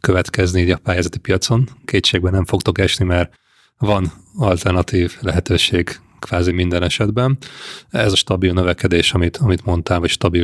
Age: 30-49